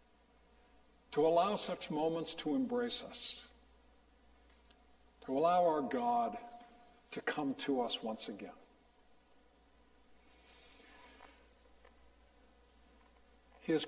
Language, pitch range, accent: English, 190-245 Hz, American